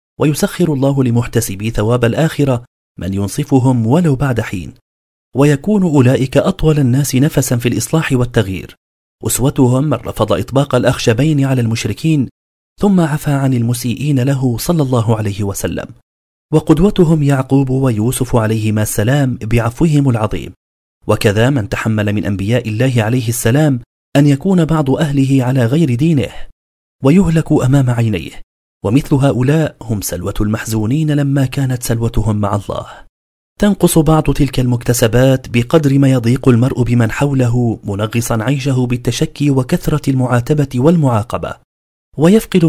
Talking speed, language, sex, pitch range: 120 wpm, Arabic, male, 110-145 Hz